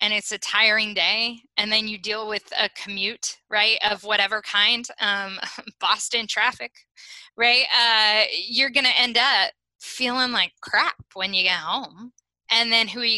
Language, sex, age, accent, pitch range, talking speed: English, female, 10-29, American, 195-235 Hz, 170 wpm